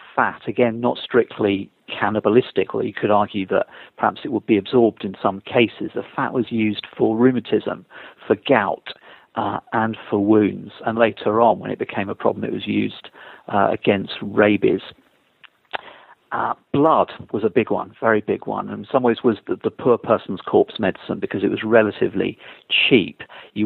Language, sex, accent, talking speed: English, male, British, 180 wpm